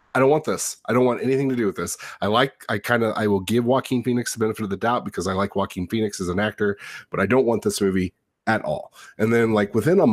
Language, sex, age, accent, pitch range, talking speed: English, male, 30-49, American, 95-120 Hz, 285 wpm